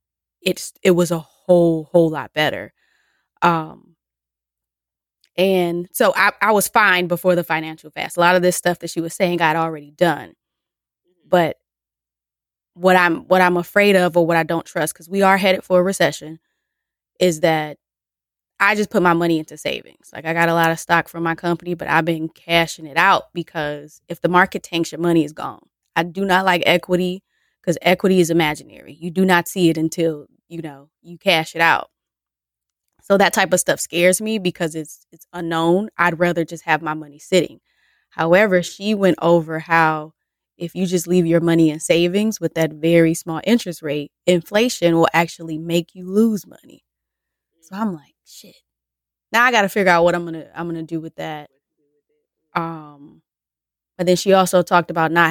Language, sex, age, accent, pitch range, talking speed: English, female, 20-39, American, 160-180 Hz, 195 wpm